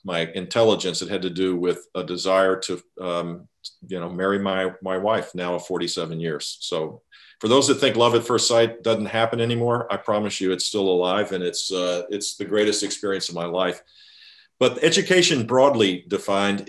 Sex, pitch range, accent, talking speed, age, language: male, 95-115 Hz, American, 190 wpm, 50-69, English